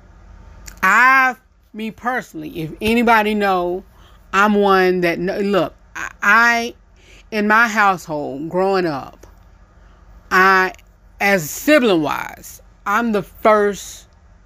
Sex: female